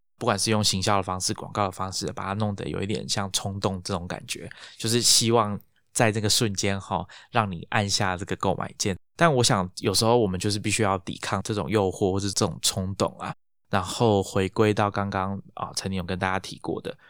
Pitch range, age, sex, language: 95-115 Hz, 20-39, male, Chinese